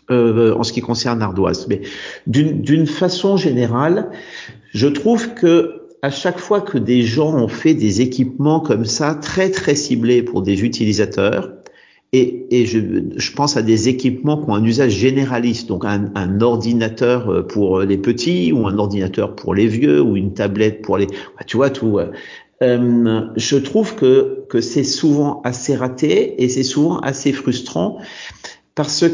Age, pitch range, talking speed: 50-69, 110-150 Hz, 165 wpm